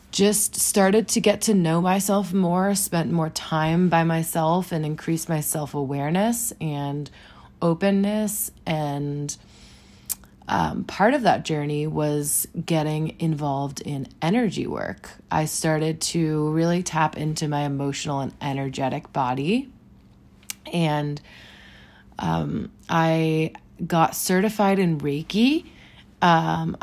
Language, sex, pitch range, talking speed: English, female, 150-190 Hz, 115 wpm